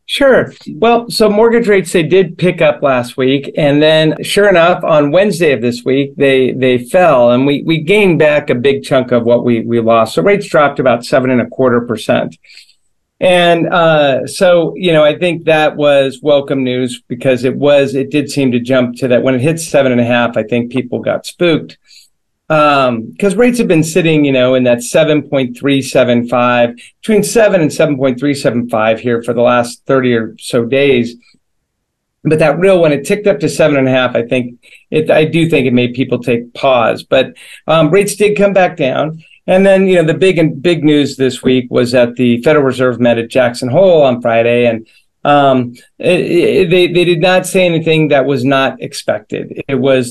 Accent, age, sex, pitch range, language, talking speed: American, 50-69, male, 125-165 Hz, English, 210 wpm